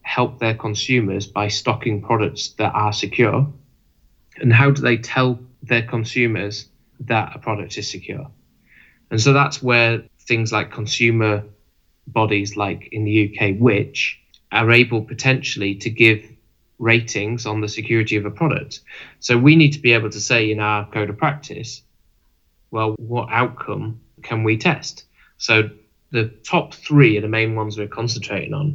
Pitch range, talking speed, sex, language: 105-130 Hz, 160 wpm, male, English